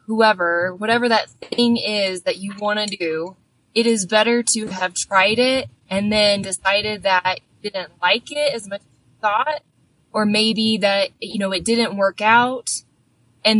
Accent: American